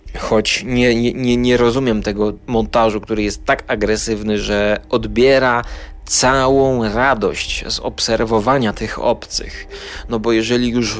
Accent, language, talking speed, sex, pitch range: native, Polish, 125 wpm, male, 105-125 Hz